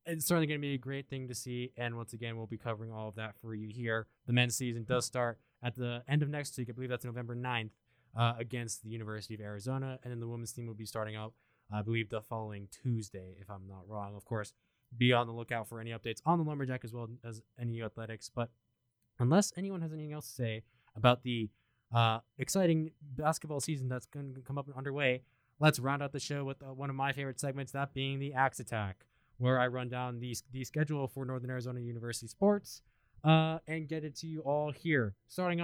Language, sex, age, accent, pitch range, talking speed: English, male, 20-39, American, 115-150 Hz, 230 wpm